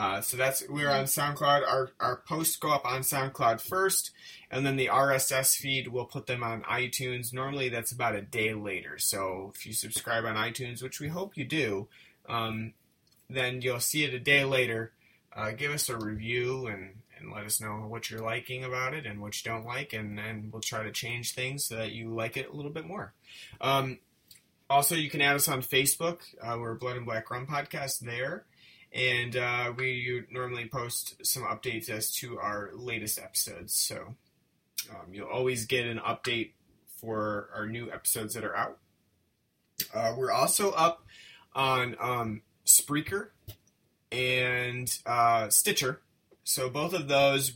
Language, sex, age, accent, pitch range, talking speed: English, male, 30-49, American, 115-135 Hz, 180 wpm